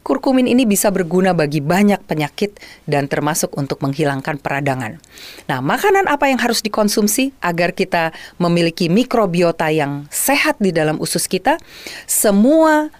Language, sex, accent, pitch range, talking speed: Indonesian, female, native, 155-230 Hz, 135 wpm